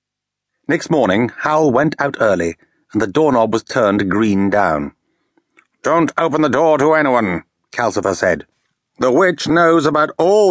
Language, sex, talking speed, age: English, male, 150 wpm, 60-79